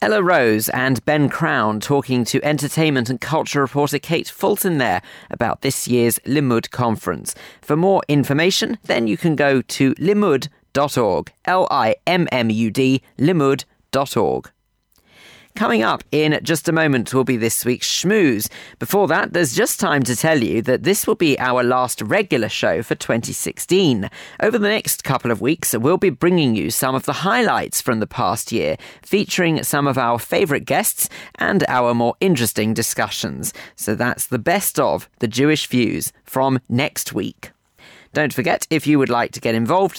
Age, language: 40-59, English